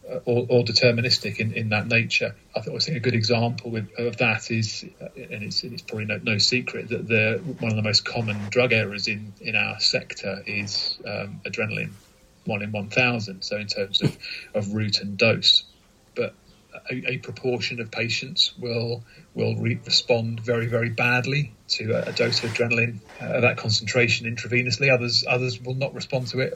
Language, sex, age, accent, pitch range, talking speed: English, male, 30-49, British, 110-125 Hz, 185 wpm